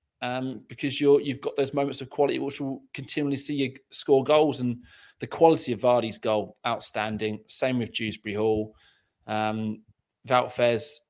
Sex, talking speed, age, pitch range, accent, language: male, 155 wpm, 20-39, 115-145 Hz, British, English